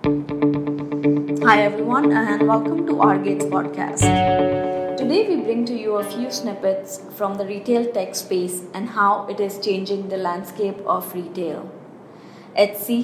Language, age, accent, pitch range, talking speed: English, 20-39, Indian, 185-215 Hz, 145 wpm